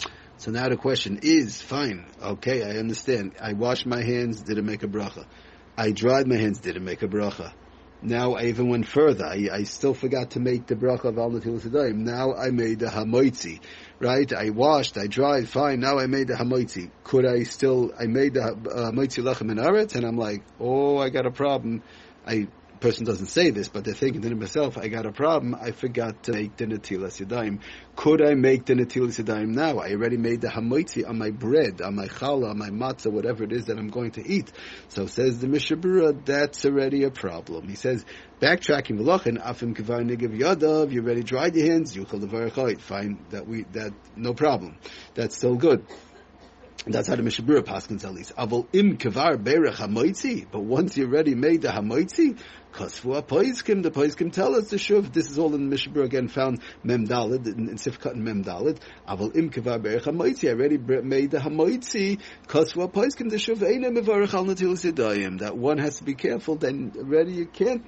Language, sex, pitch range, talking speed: English, male, 110-145 Hz, 200 wpm